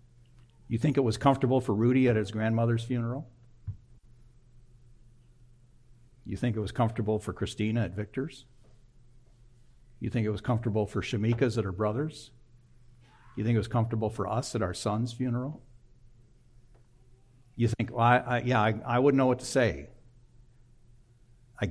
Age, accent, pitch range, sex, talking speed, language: 60-79, American, 115-125 Hz, male, 145 wpm, English